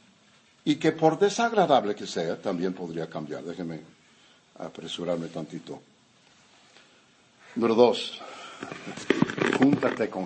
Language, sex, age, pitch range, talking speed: Spanish, male, 60-79, 110-140 Hz, 95 wpm